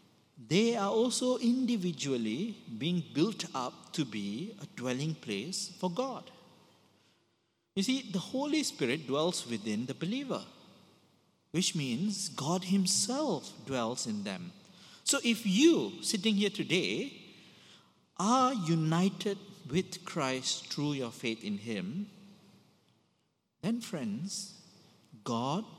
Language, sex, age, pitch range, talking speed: English, male, 50-69, 145-205 Hz, 110 wpm